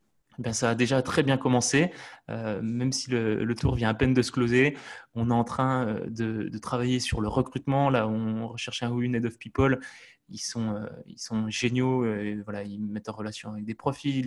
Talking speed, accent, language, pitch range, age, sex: 230 wpm, French, French, 115-135 Hz, 20-39, male